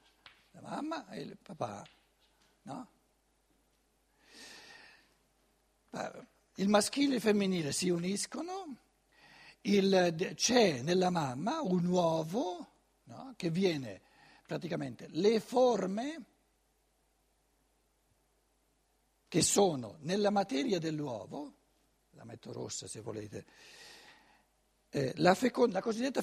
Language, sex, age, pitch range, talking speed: Italian, male, 60-79, 165-240 Hz, 90 wpm